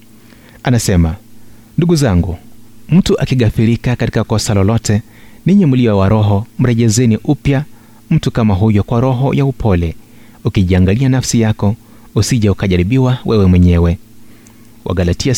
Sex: male